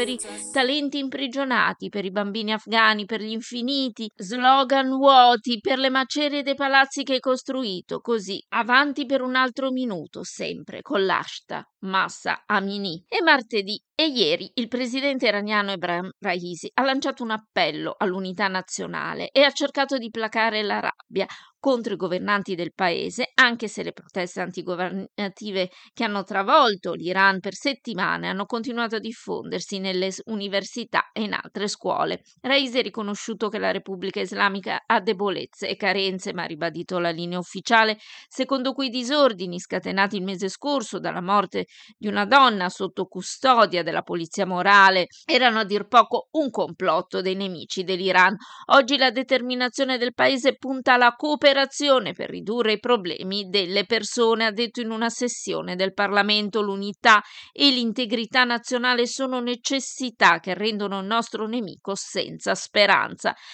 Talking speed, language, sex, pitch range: 150 wpm, Italian, female, 195-255 Hz